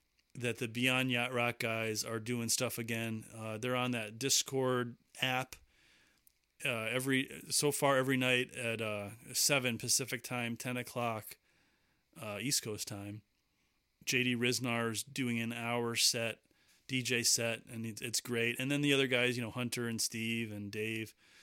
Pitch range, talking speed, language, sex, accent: 115-130 Hz, 155 wpm, English, male, American